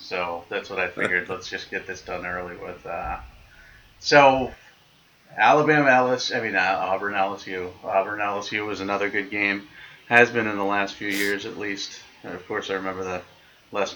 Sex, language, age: male, English, 30-49